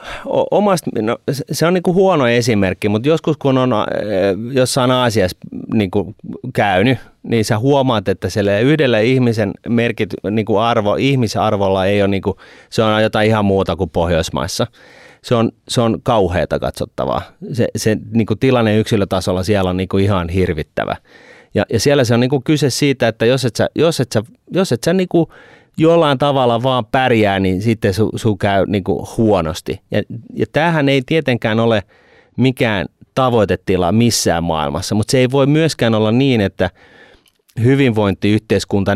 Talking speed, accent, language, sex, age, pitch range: 160 wpm, native, Finnish, male, 30-49, 100-130 Hz